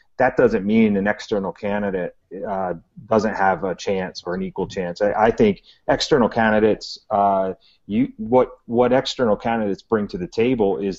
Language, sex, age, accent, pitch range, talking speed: English, male, 30-49, American, 95-120 Hz, 170 wpm